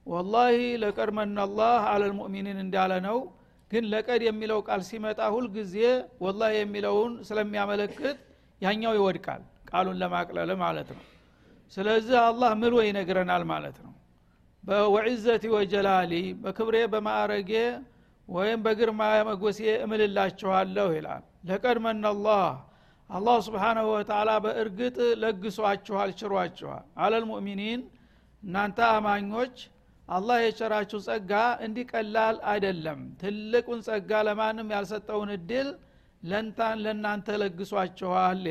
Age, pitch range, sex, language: 60-79, 200-225 Hz, male, Amharic